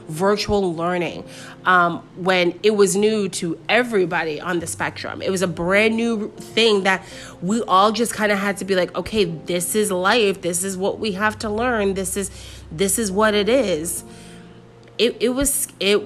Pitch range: 160-205 Hz